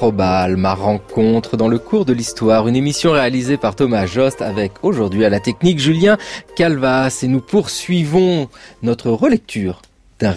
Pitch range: 105-145 Hz